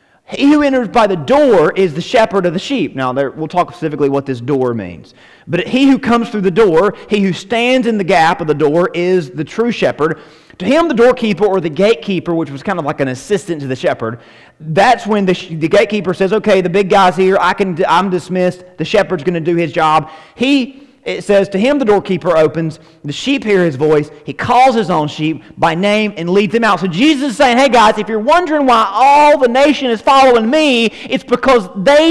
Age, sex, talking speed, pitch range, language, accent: 30-49, male, 230 wpm, 180-245 Hz, English, American